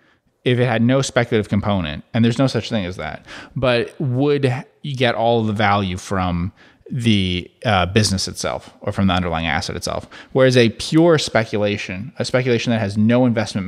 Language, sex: English, male